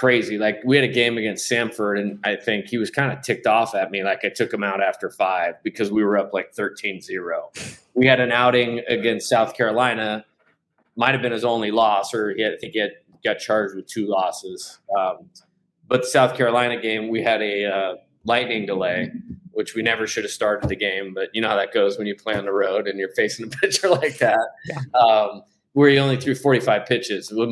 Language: English